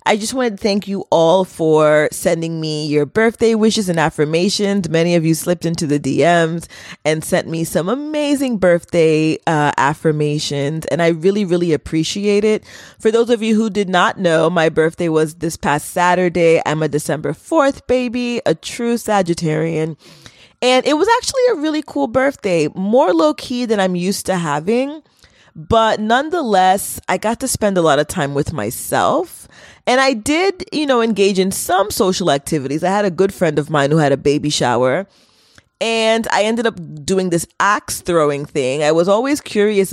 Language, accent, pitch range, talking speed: English, American, 155-225 Hz, 180 wpm